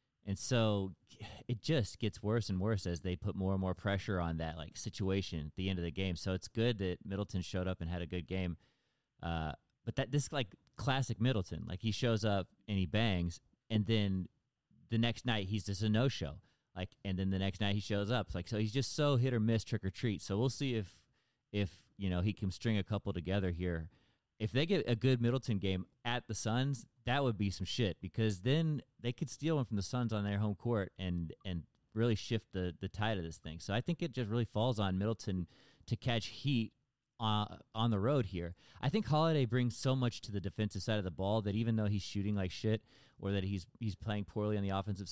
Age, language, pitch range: 30-49, English, 95-120 Hz